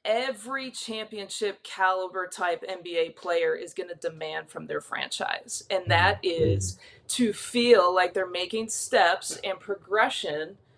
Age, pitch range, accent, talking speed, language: 30-49, 185-260 Hz, American, 135 wpm, English